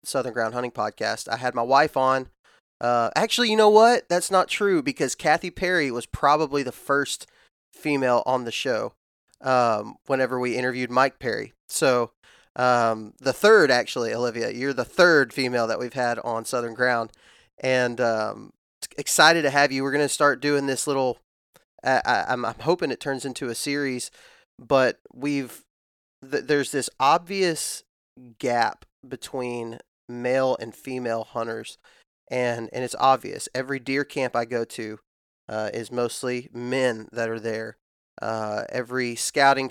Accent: American